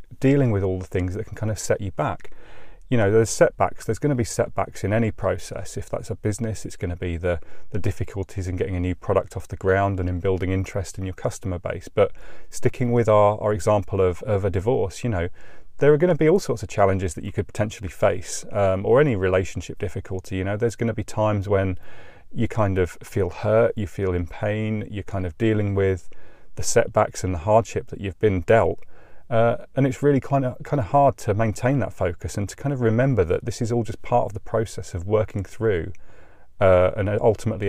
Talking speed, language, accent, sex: 230 wpm, English, British, male